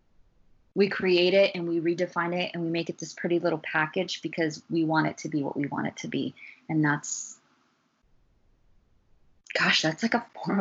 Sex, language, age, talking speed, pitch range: female, English, 20-39, 190 wpm, 150-180 Hz